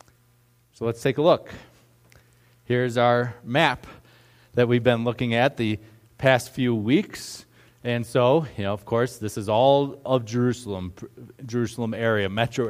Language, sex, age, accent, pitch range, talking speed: English, male, 40-59, American, 115-135 Hz, 145 wpm